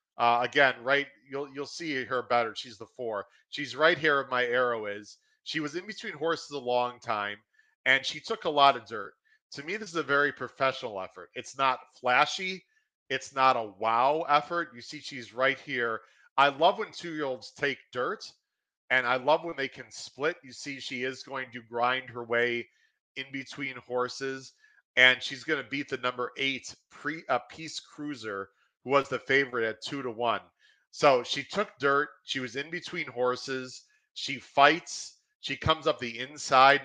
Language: English